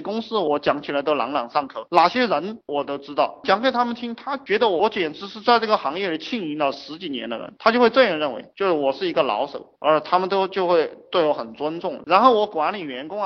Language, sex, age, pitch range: Chinese, male, 20-39, 145-225 Hz